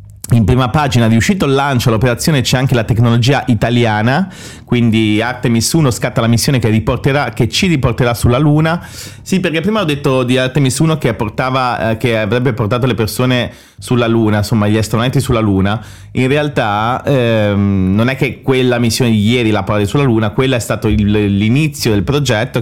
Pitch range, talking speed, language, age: 105-130 Hz, 180 wpm, English, 30-49